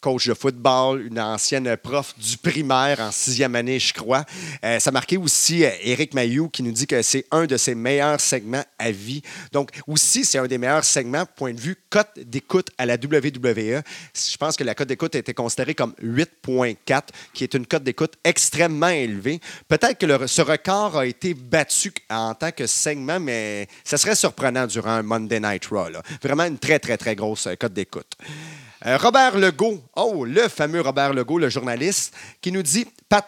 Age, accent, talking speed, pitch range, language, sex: 30-49, Canadian, 195 wpm, 125-160 Hz, French, male